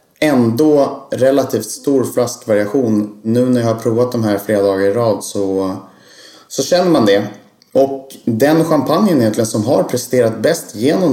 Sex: male